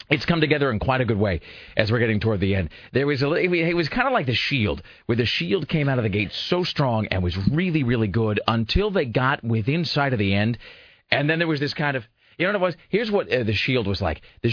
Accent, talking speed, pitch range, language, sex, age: American, 275 wpm, 105-145 Hz, English, male, 40-59